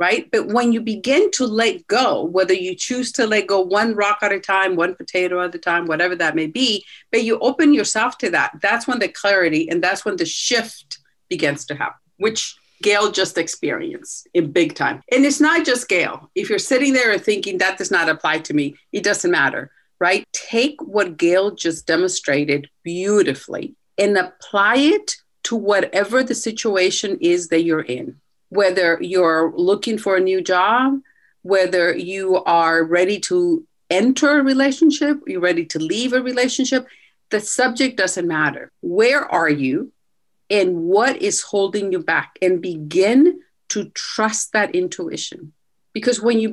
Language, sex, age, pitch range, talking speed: English, female, 50-69, 180-255 Hz, 175 wpm